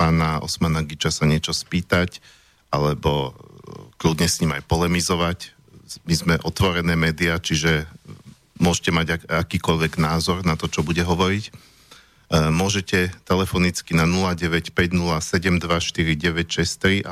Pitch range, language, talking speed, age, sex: 80-90 Hz, Slovak, 105 wpm, 40-59, male